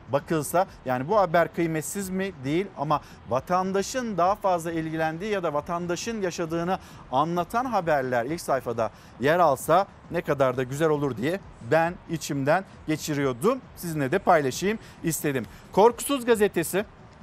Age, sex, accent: 50-69, male, native